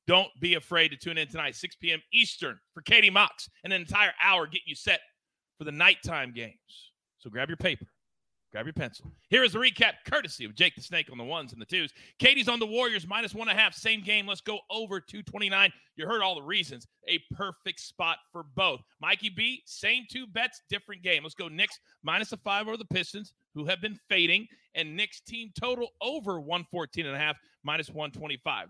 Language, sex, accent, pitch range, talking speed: English, male, American, 160-215 Hz, 200 wpm